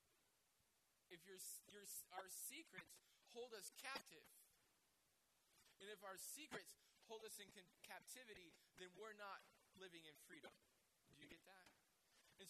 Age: 20-39